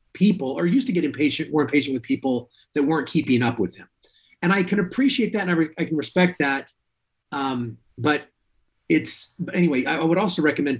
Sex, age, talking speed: male, 30-49, 210 wpm